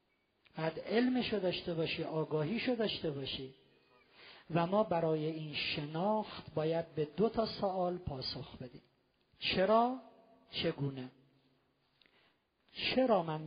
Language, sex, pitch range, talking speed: Persian, male, 150-200 Hz, 105 wpm